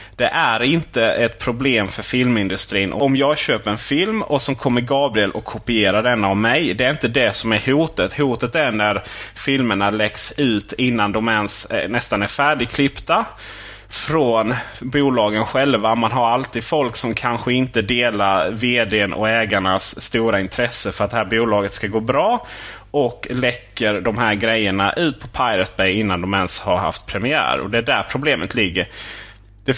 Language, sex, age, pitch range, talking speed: Swedish, male, 30-49, 105-125 Hz, 175 wpm